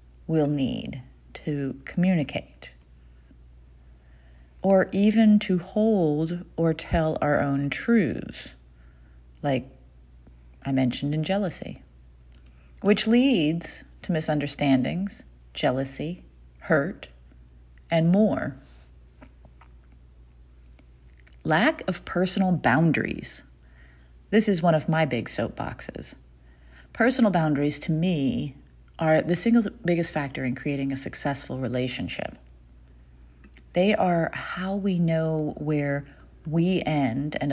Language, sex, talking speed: English, female, 95 wpm